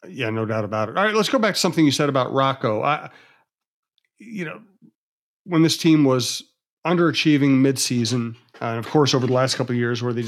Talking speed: 215 wpm